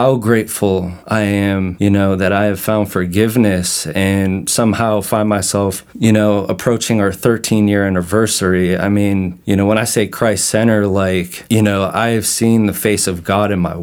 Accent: American